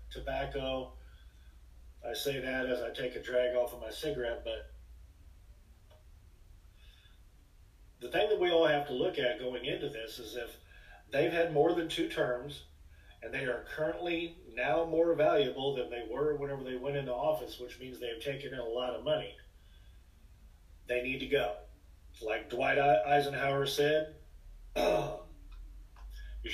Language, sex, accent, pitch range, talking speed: English, male, American, 105-150 Hz, 150 wpm